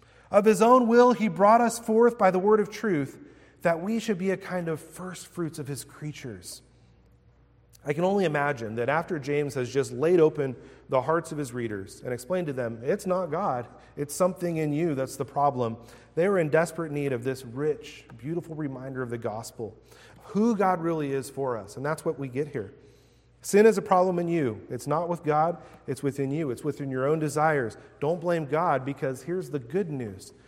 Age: 40-59